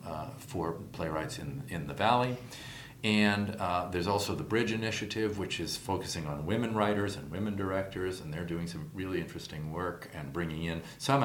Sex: male